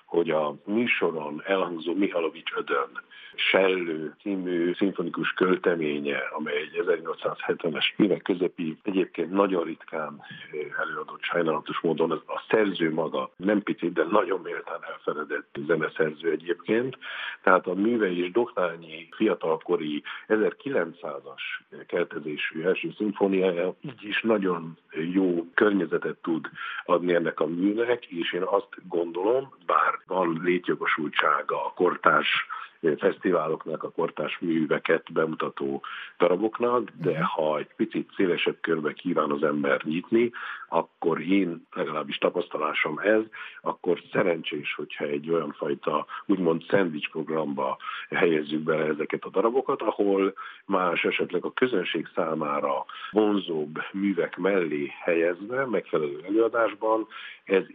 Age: 50-69